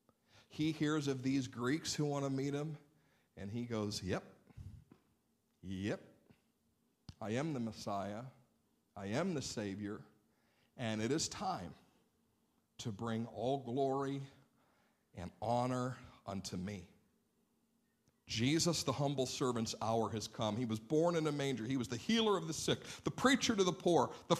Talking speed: 150 wpm